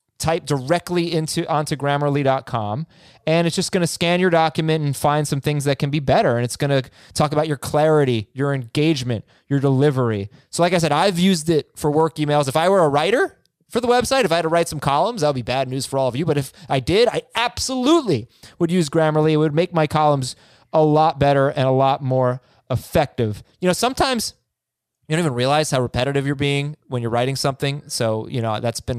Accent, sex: American, male